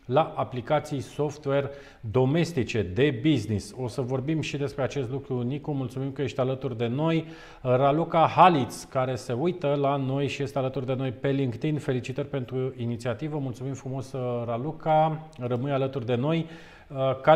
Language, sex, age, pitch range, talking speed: Romanian, male, 40-59, 130-150 Hz, 155 wpm